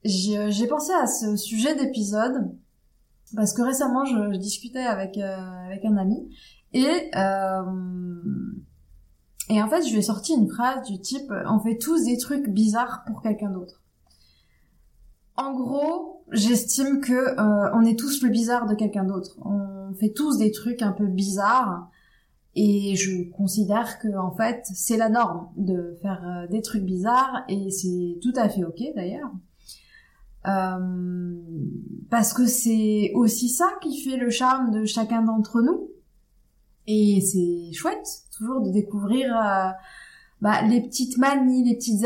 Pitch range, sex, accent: 190-250 Hz, female, French